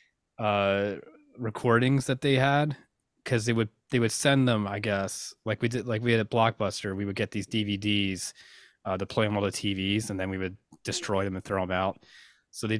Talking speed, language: 215 wpm, English